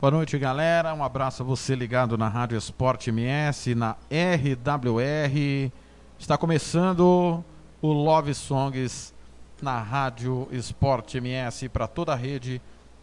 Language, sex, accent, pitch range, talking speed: Portuguese, male, Brazilian, 120-155 Hz, 125 wpm